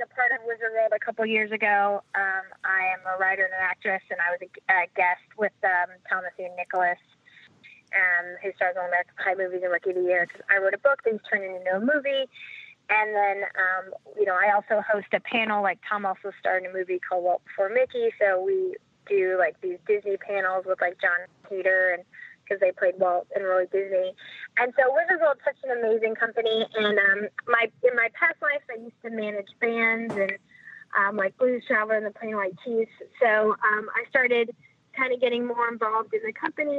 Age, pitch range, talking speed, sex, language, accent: 20-39, 195-245 Hz, 220 wpm, female, English, American